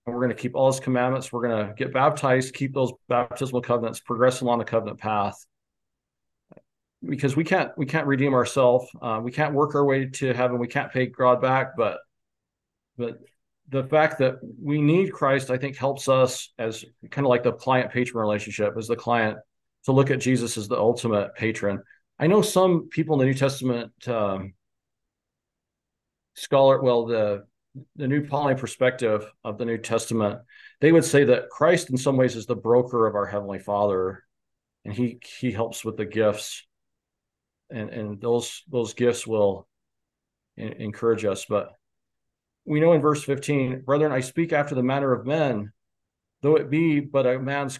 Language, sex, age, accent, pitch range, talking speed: English, male, 40-59, American, 110-135 Hz, 180 wpm